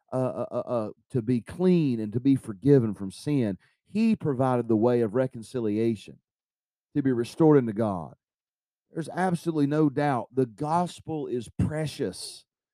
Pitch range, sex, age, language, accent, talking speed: 110-150 Hz, male, 40-59, English, American, 150 wpm